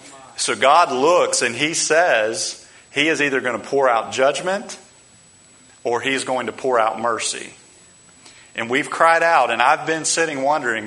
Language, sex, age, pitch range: English, male, 40-59, 110-145 Hz